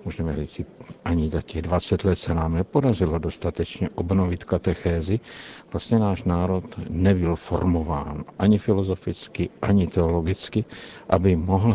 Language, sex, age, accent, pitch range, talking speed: Czech, male, 60-79, native, 85-95 Hz, 125 wpm